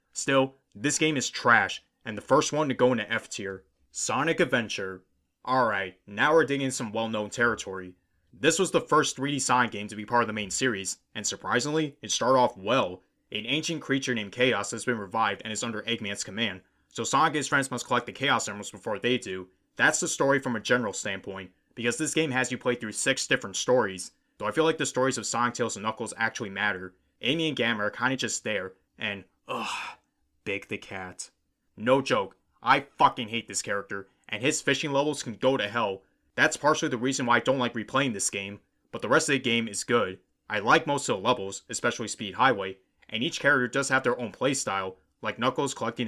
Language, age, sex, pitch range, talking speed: English, 30-49, male, 100-130 Hz, 215 wpm